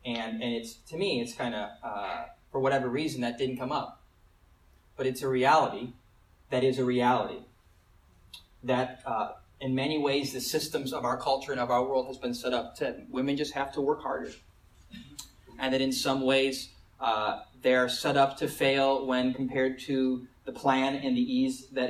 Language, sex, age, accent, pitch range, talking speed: English, male, 30-49, American, 105-155 Hz, 190 wpm